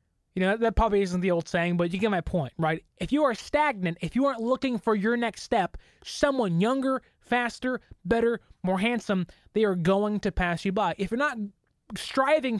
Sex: male